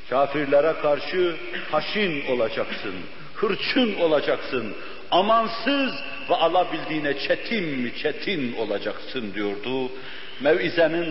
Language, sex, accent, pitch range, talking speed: Turkish, male, native, 140-180 Hz, 80 wpm